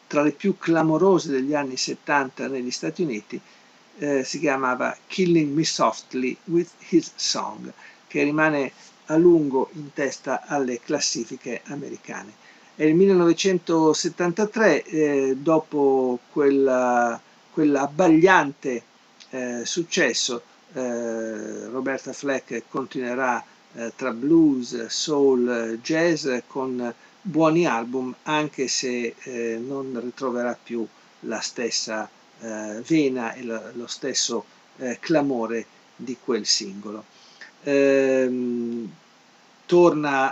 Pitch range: 120-155 Hz